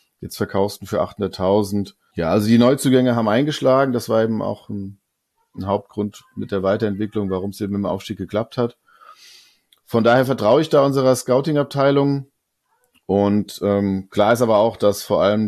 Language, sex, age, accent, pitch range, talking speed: German, male, 40-59, German, 100-120 Hz, 165 wpm